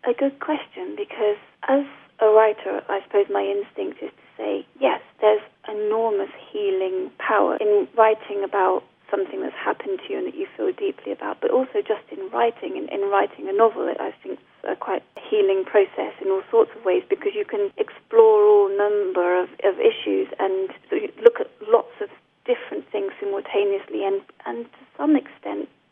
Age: 30-49